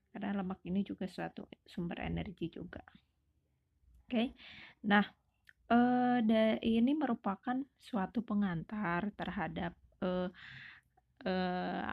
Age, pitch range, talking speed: 20-39, 185-215 Hz, 100 wpm